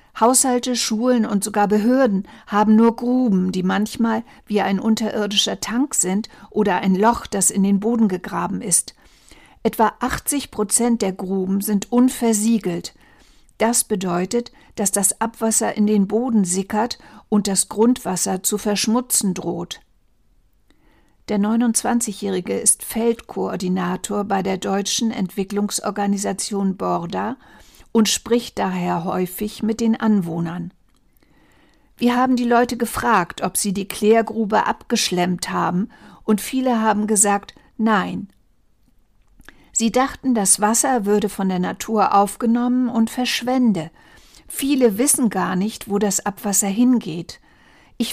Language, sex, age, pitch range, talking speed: German, female, 50-69, 195-235 Hz, 120 wpm